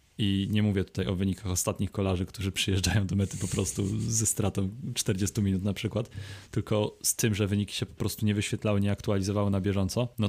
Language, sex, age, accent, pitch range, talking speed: Polish, male, 20-39, native, 95-110 Hz, 205 wpm